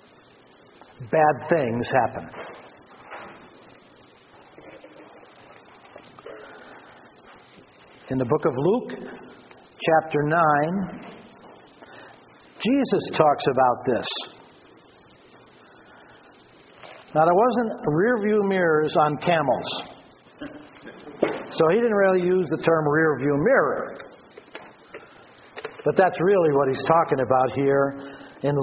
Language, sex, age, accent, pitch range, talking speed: English, male, 60-79, American, 135-180 Hz, 80 wpm